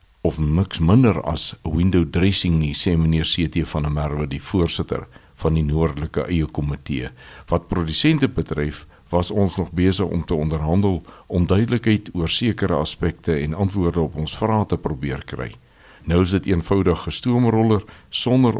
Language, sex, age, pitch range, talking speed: Swedish, male, 60-79, 80-95 Hz, 155 wpm